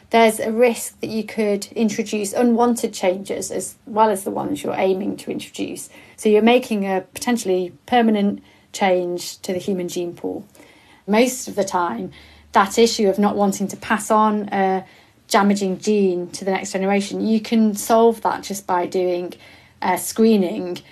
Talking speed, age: 165 wpm, 30-49